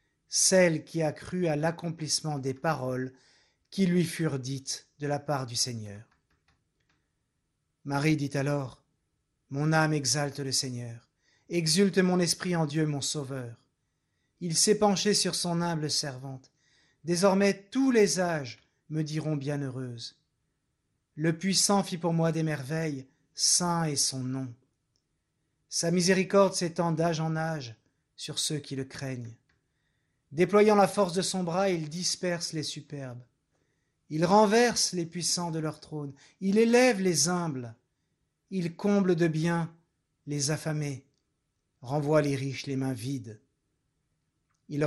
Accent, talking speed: French, 135 wpm